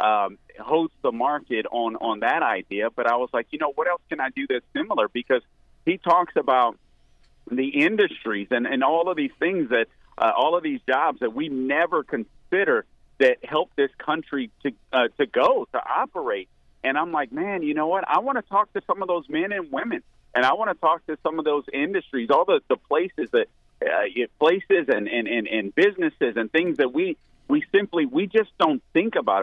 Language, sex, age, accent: English, male, 40-59, American